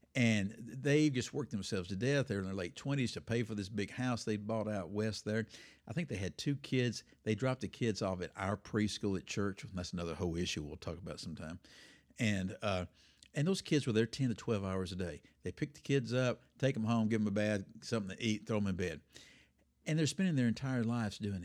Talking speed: 240 wpm